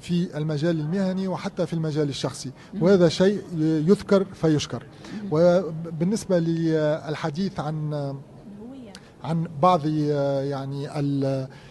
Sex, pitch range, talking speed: male, 155-185 Hz, 85 wpm